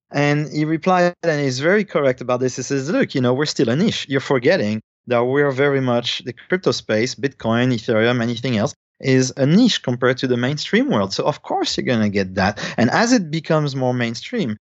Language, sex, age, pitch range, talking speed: English, male, 30-49, 120-145 Hz, 220 wpm